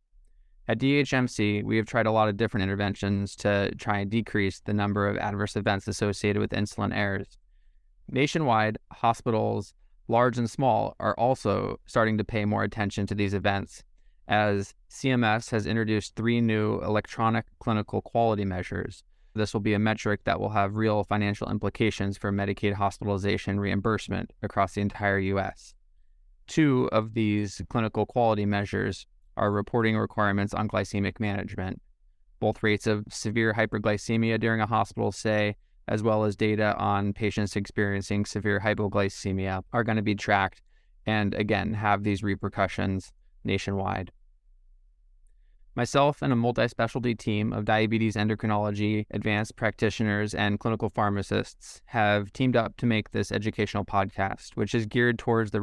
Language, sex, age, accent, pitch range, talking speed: English, male, 20-39, American, 100-110 Hz, 145 wpm